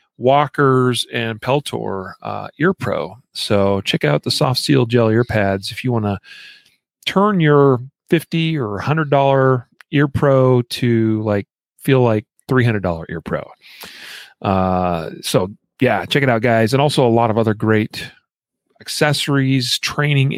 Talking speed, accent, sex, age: 145 wpm, American, male, 40-59